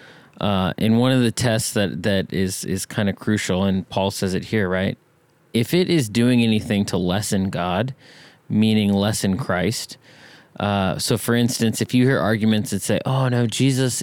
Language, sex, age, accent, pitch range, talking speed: English, male, 30-49, American, 100-120 Hz, 185 wpm